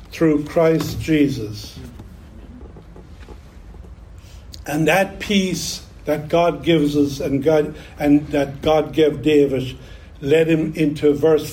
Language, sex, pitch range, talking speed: English, male, 115-160 Hz, 110 wpm